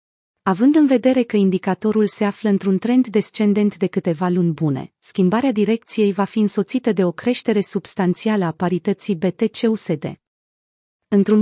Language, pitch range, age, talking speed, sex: Romanian, 180-220 Hz, 30-49, 140 wpm, female